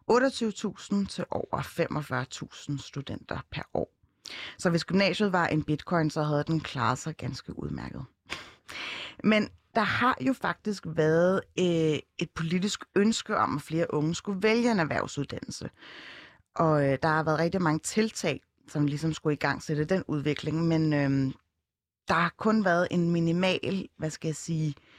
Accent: native